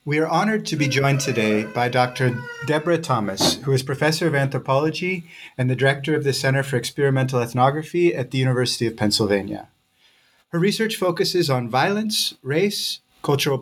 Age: 30-49